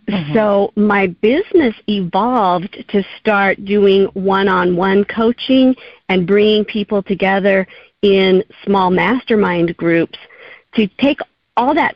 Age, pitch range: 50-69, 185-220 Hz